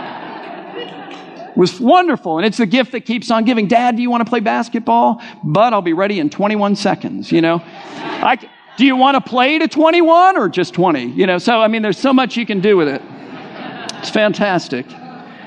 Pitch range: 170-225 Hz